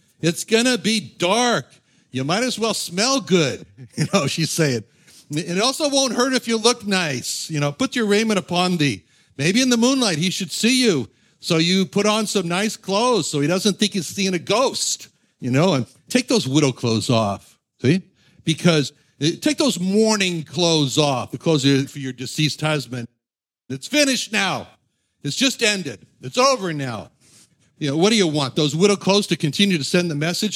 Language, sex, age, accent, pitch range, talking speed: English, male, 60-79, American, 135-200 Hz, 190 wpm